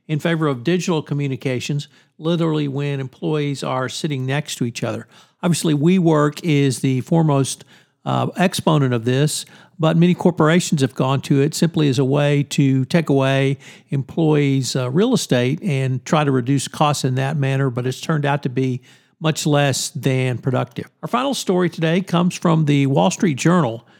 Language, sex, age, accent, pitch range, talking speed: English, male, 50-69, American, 135-170 Hz, 175 wpm